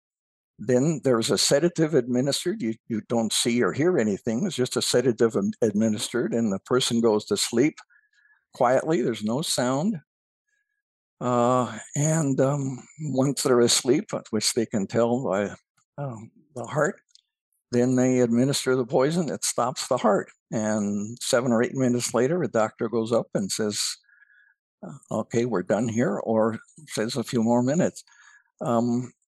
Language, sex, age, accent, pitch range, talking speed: English, male, 60-79, American, 110-130 Hz, 145 wpm